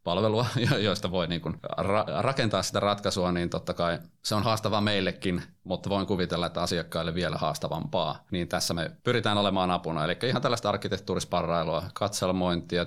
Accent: native